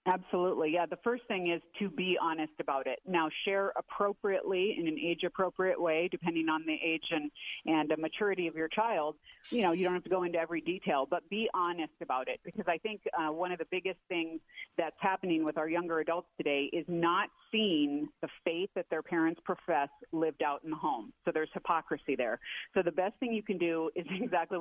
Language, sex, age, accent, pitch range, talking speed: English, female, 40-59, American, 160-200 Hz, 210 wpm